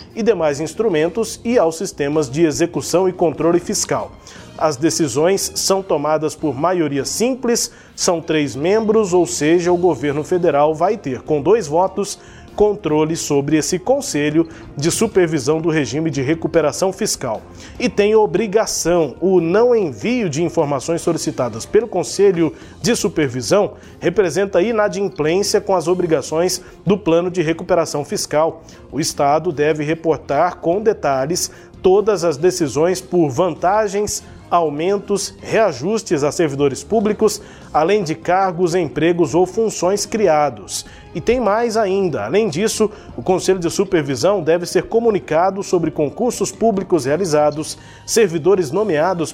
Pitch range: 155-200 Hz